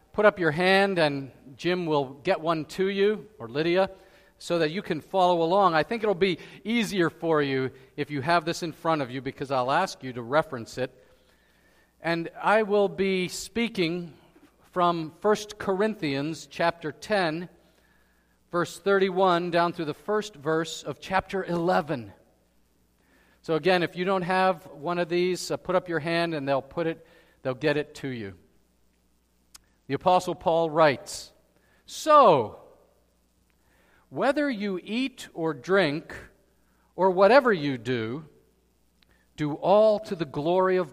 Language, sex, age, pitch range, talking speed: English, male, 40-59, 145-195 Hz, 150 wpm